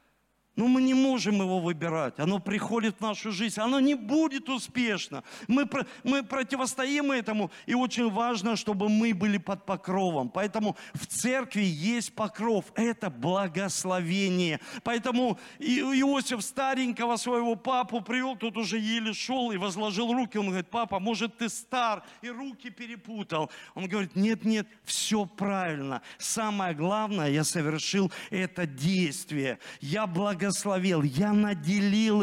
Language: Russian